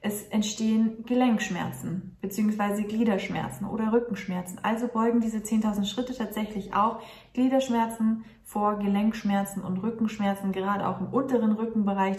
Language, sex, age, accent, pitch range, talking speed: German, female, 20-39, German, 195-230 Hz, 120 wpm